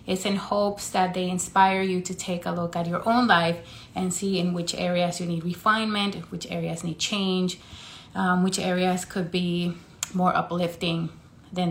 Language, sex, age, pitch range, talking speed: English, female, 30-49, 170-195 Hz, 180 wpm